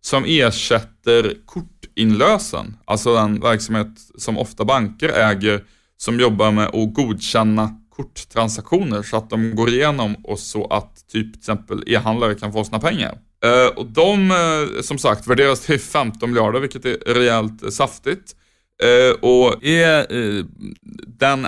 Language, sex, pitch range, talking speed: Swedish, male, 110-135 Hz, 130 wpm